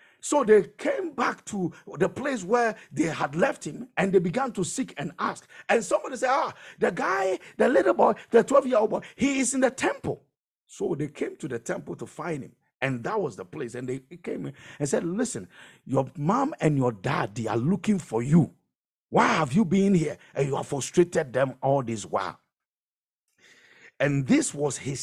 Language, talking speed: English, 200 wpm